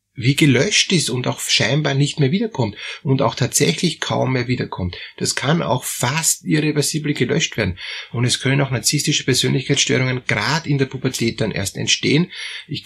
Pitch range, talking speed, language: 115-145 Hz, 170 wpm, German